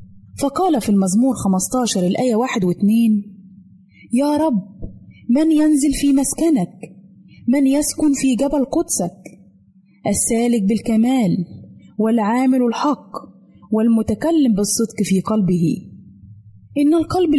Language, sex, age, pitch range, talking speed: Arabic, female, 20-39, 190-265 Hz, 95 wpm